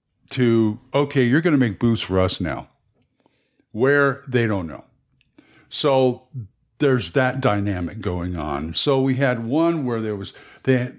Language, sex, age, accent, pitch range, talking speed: English, male, 50-69, American, 120-150 Hz, 155 wpm